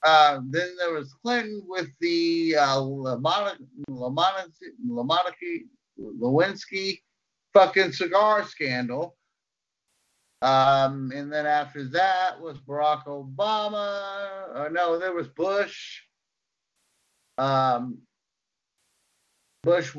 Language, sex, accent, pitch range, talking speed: English, male, American, 135-185 Hz, 95 wpm